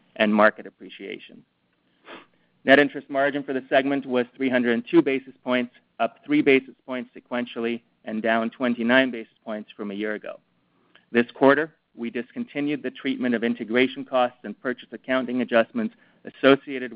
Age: 40-59